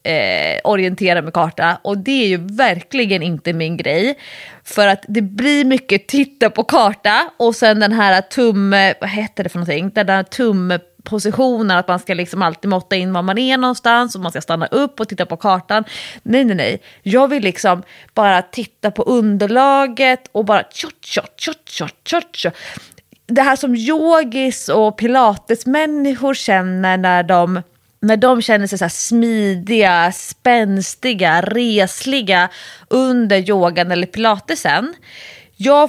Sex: female